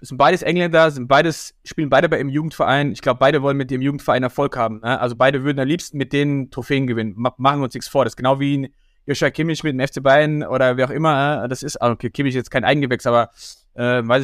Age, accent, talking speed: 20-39, German, 260 wpm